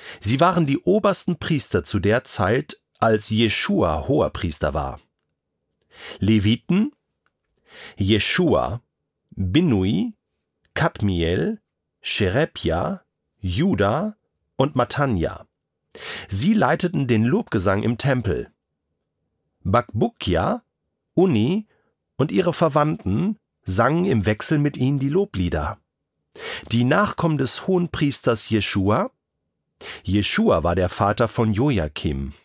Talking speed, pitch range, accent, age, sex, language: 95 wpm, 100-155 Hz, German, 40-59, male, German